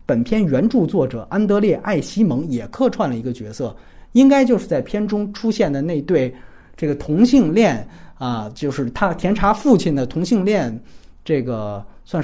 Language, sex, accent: Chinese, male, native